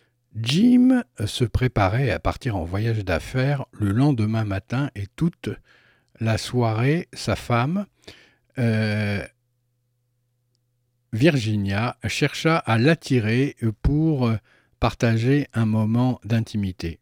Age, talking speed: 60-79, 95 wpm